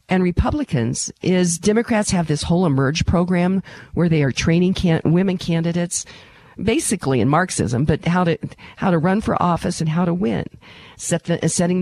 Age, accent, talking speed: 50-69, American, 175 wpm